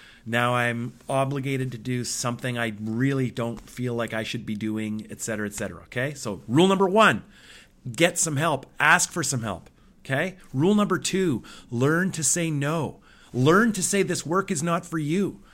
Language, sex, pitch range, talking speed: English, male, 115-150 Hz, 185 wpm